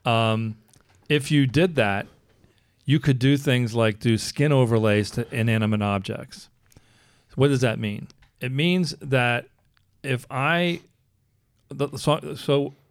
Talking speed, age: 130 wpm, 40-59